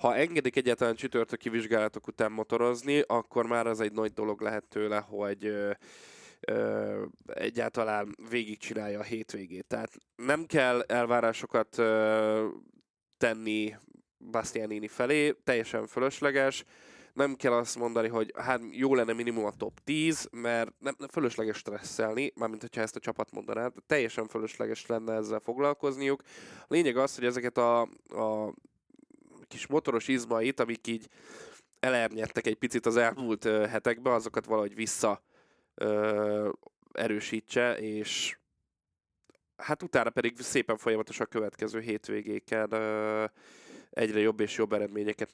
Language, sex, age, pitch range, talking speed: Hungarian, male, 10-29, 110-125 Hz, 130 wpm